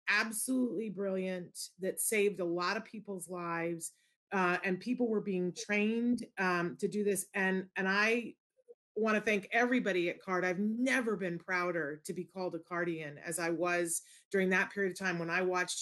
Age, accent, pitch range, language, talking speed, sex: 30-49, American, 175-205 Hz, English, 180 wpm, female